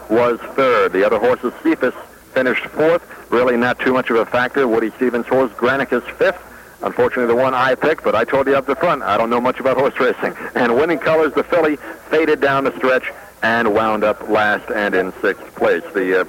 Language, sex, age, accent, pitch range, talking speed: English, male, 60-79, American, 115-140 Hz, 215 wpm